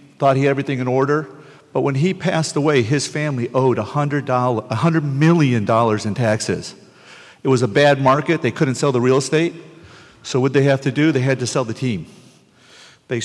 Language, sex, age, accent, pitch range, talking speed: English, male, 50-69, American, 125-150 Hz, 200 wpm